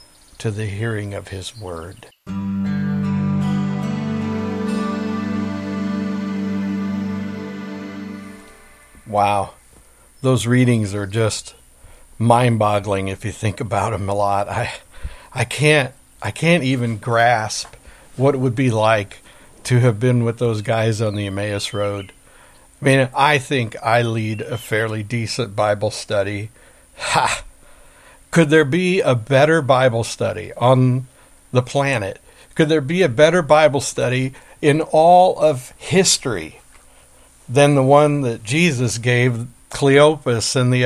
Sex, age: male, 60-79